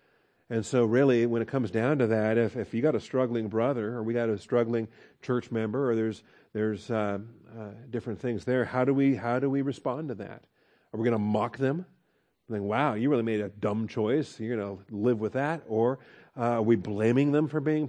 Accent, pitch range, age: American, 110-135 Hz, 50-69